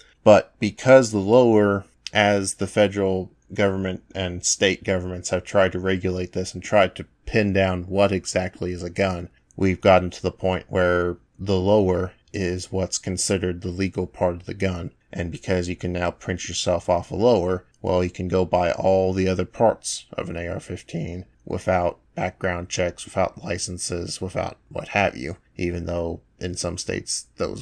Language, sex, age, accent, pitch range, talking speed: English, male, 30-49, American, 90-100 Hz, 175 wpm